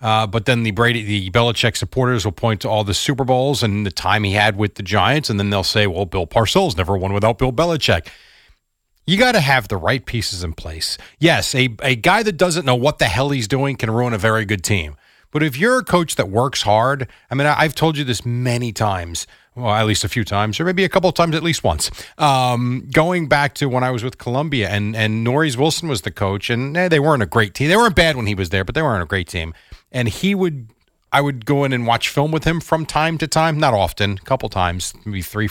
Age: 40-59